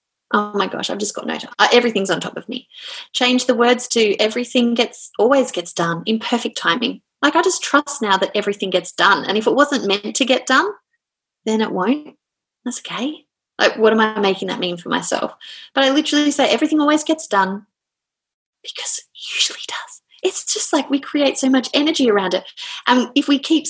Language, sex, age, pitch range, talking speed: English, female, 30-49, 200-285 Hz, 210 wpm